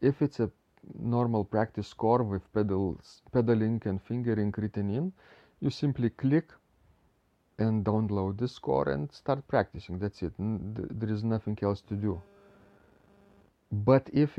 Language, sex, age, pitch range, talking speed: English, male, 40-59, 95-115 Hz, 140 wpm